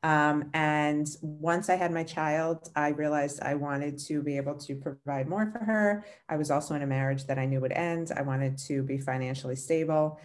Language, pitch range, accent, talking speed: English, 140-175 Hz, American, 210 wpm